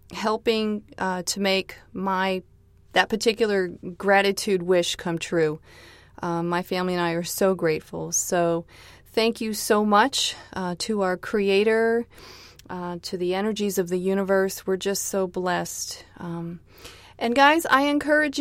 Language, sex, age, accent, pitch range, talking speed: English, female, 30-49, American, 175-225 Hz, 145 wpm